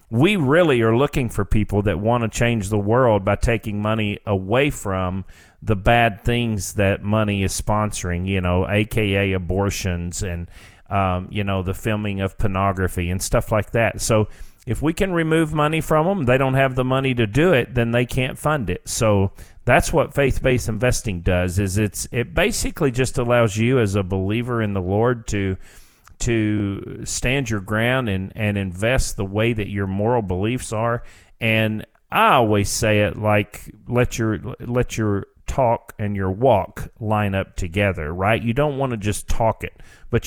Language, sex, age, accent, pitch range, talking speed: English, male, 40-59, American, 100-120 Hz, 180 wpm